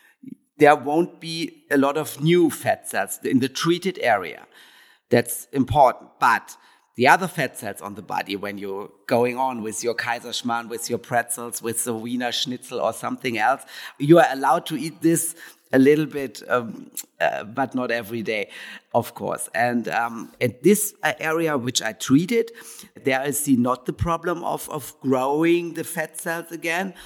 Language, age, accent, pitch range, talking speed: English, 50-69, German, 110-155 Hz, 175 wpm